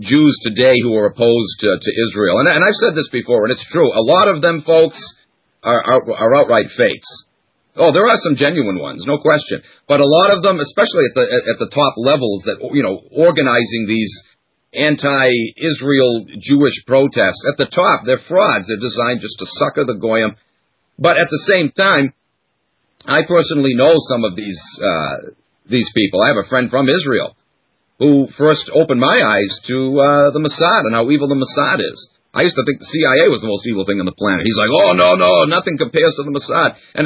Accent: American